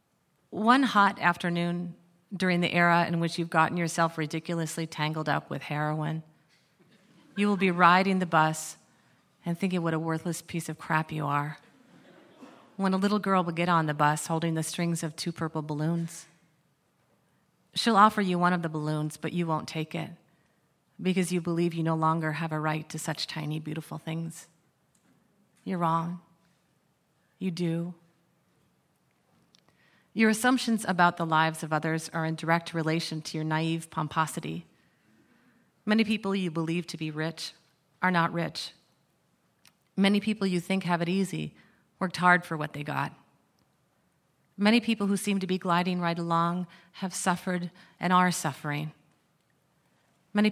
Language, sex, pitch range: English, female, 160-180 Hz